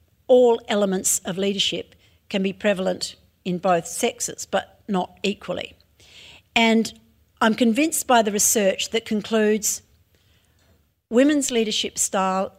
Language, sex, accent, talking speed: English, female, Australian, 115 wpm